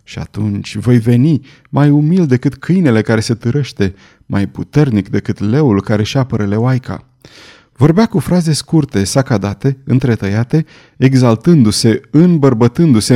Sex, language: male, Romanian